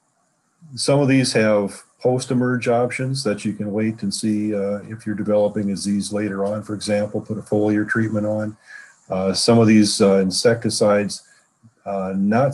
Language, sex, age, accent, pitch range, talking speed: English, male, 40-59, American, 95-110 Hz, 165 wpm